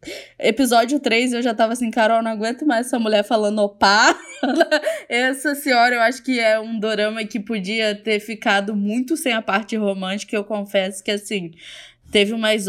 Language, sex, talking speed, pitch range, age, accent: Portuguese, female, 175 wpm, 195-235 Hz, 10-29, Brazilian